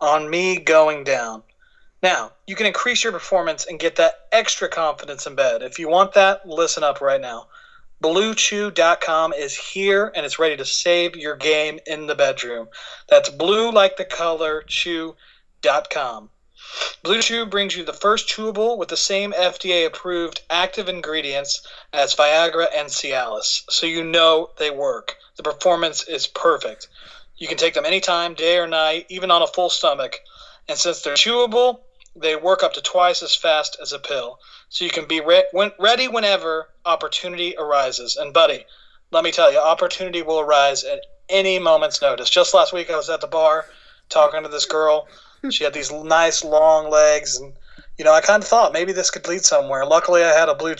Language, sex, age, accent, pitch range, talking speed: English, male, 30-49, American, 155-200 Hz, 185 wpm